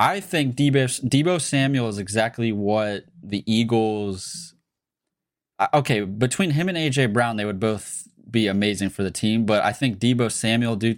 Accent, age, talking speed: American, 20-39, 160 wpm